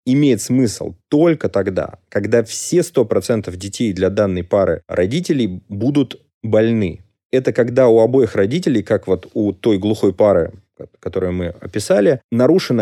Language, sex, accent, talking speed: Russian, male, native, 135 wpm